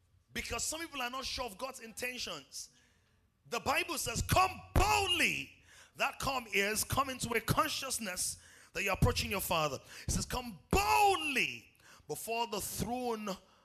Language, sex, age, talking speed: English, male, 30-49, 150 wpm